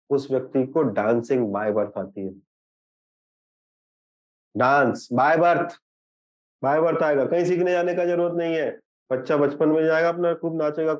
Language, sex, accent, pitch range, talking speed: Hindi, male, native, 145-200 Hz, 155 wpm